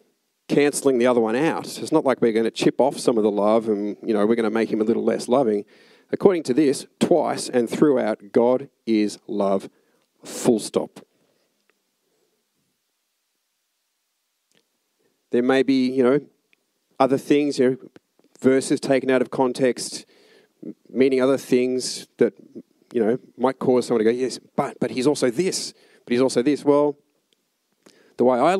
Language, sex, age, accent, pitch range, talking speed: English, male, 40-59, Australian, 110-145 Hz, 165 wpm